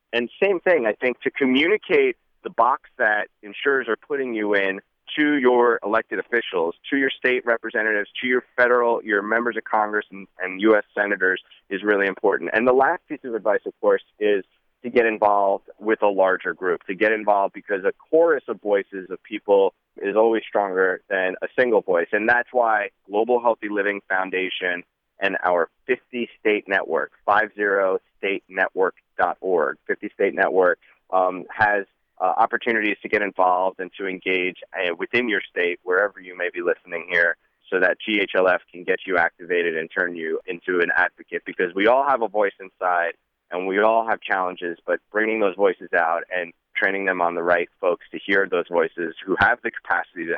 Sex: male